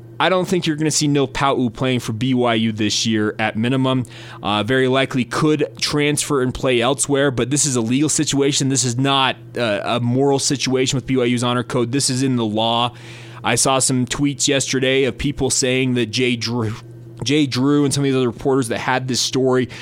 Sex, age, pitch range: male, 20-39, 115-140 Hz